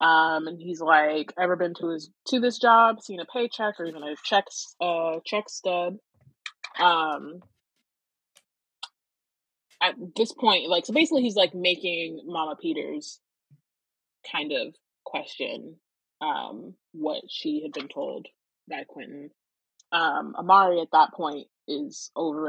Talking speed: 135 wpm